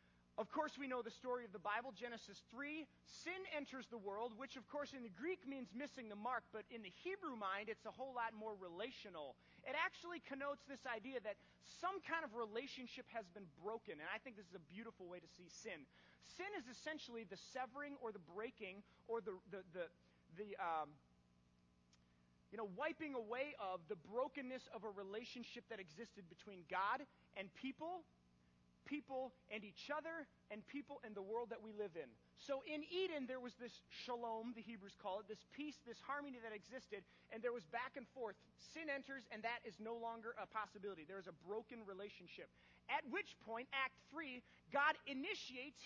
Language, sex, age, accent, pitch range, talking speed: English, male, 30-49, American, 210-275 Hz, 195 wpm